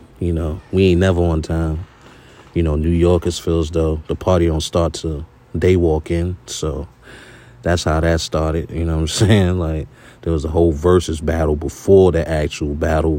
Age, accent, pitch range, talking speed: 30-49, American, 80-90 Hz, 190 wpm